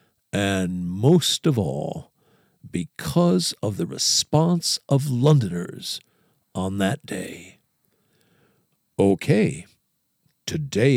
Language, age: English, 60-79